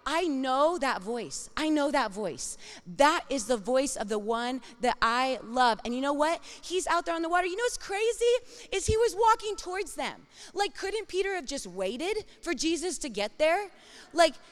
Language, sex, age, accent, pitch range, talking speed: English, female, 20-39, American, 220-335 Hz, 205 wpm